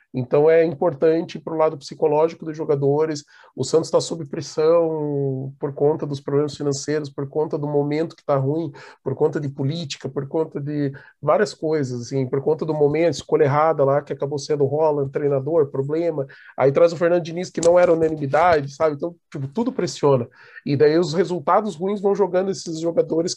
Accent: Brazilian